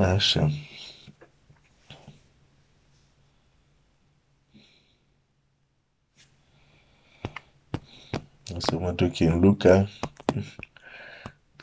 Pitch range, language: 90-115 Hz, Romanian